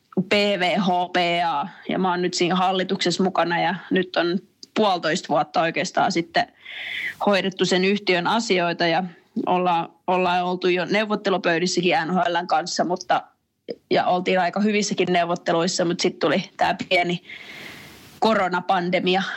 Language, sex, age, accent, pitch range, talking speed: Finnish, female, 20-39, native, 175-190 Hz, 120 wpm